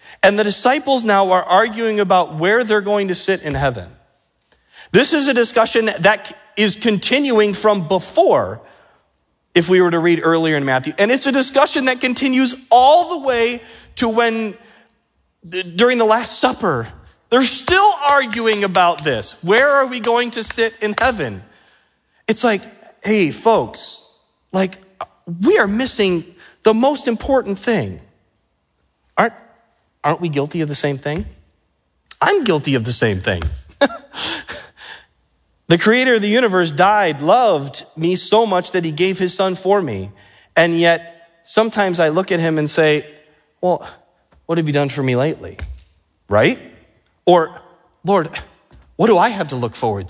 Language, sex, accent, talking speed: English, male, American, 155 wpm